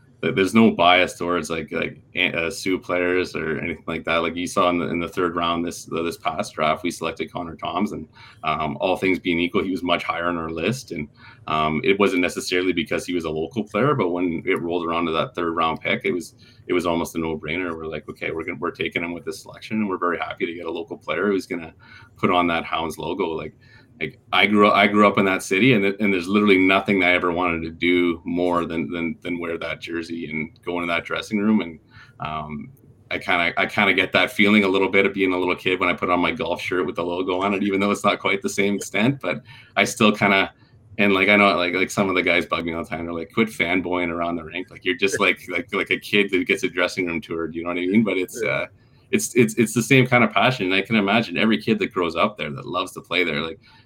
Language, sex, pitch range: English, male, 85-100 Hz